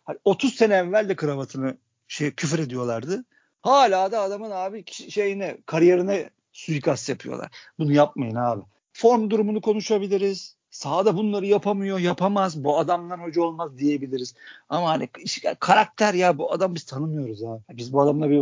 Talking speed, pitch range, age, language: 145 wpm, 145-200 Hz, 50-69, Turkish